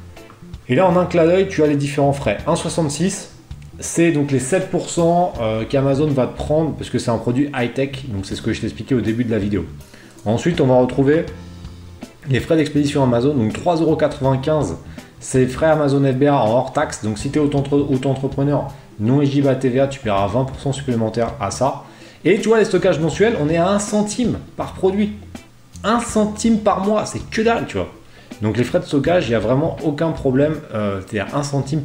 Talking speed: 200 wpm